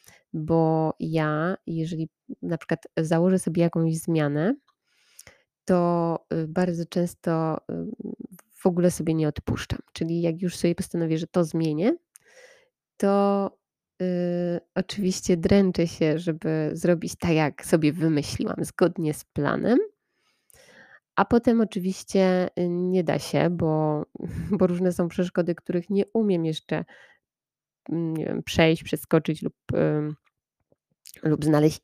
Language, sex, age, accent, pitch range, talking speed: Polish, female, 20-39, native, 160-195 Hz, 115 wpm